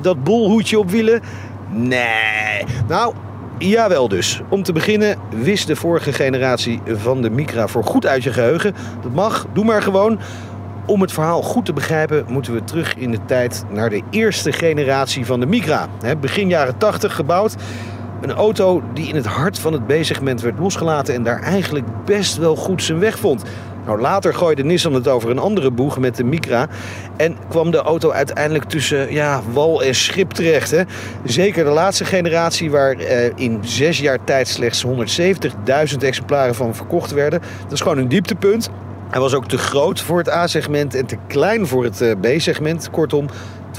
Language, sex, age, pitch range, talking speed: Dutch, male, 40-59, 115-170 Hz, 180 wpm